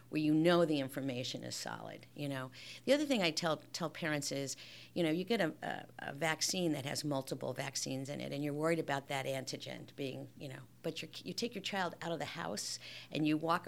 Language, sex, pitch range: English, female, 135-170 Hz